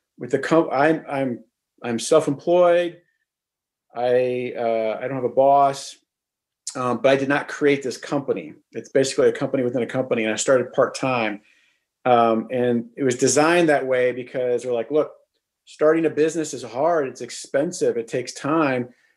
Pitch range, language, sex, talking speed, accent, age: 130-175 Hz, English, male, 170 wpm, American, 40-59